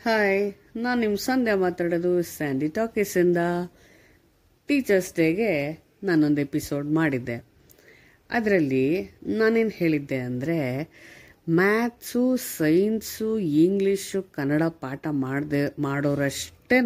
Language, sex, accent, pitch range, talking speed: Kannada, female, native, 140-205 Hz, 80 wpm